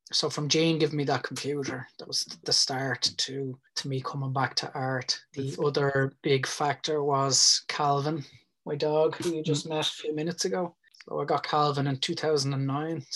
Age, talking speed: 20-39, 180 wpm